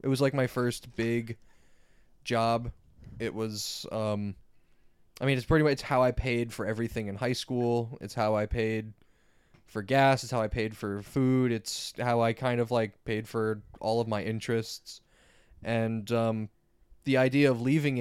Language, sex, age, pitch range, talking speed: English, male, 20-39, 105-125 Hz, 175 wpm